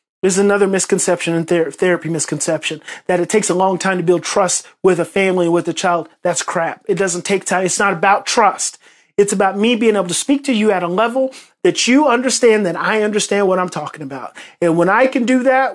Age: 30-49